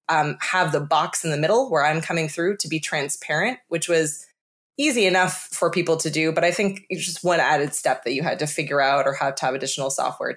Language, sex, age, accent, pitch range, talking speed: English, female, 20-39, American, 150-195 Hz, 245 wpm